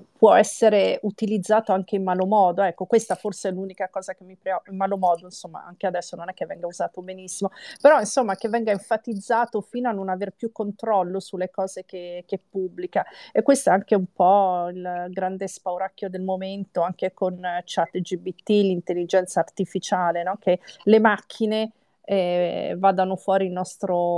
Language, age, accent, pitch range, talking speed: Italian, 40-59, native, 180-210 Hz, 175 wpm